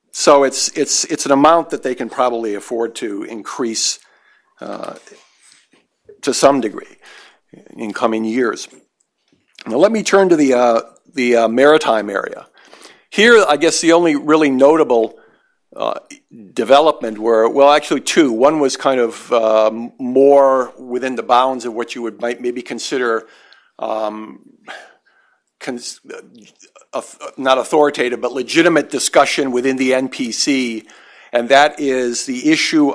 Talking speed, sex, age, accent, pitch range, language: 140 wpm, male, 50-69, American, 120-150 Hz, English